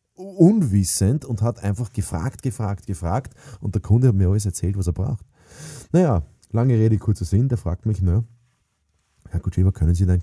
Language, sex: German, male